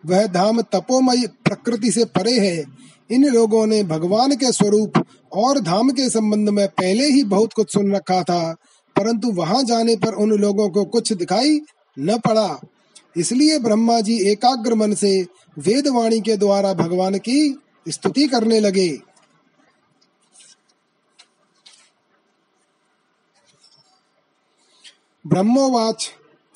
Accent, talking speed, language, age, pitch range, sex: native, 115 wpm, Hindi, 30-49, 195-230 Hz, male